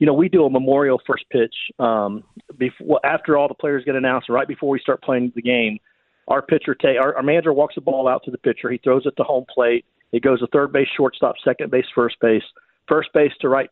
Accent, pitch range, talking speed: American, 120-140 Hz, 245 wpm